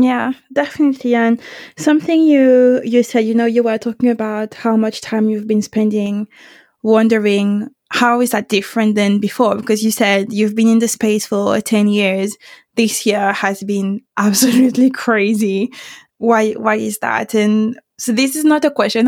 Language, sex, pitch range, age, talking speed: English, female, 210-240 Hz, 20-39, 170 wpm